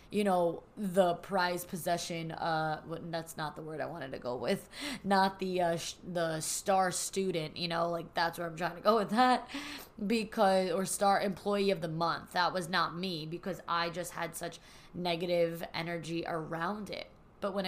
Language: English